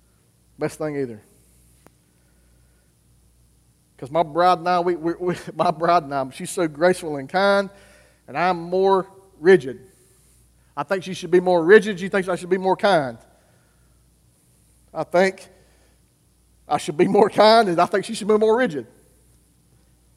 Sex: male